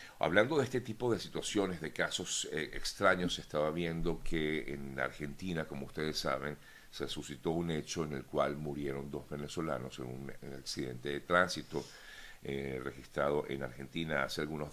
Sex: male